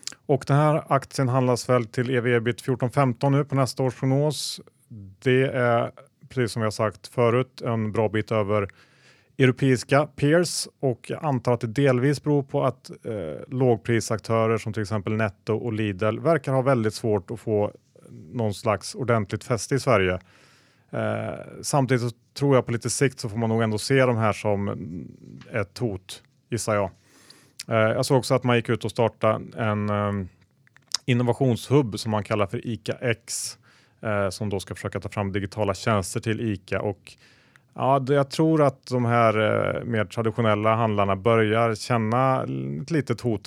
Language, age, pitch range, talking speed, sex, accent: Swedish, 30-49, 105-130 Hz, 165 wpm, male, Norwegian